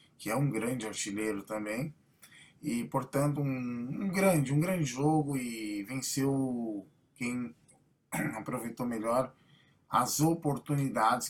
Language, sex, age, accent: Portuguese, male, 20-39, Brazilian